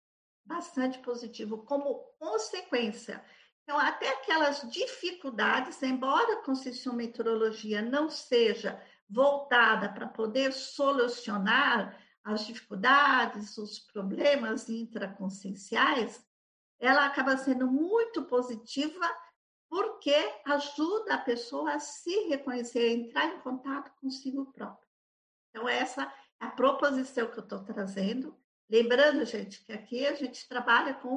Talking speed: 110 wpm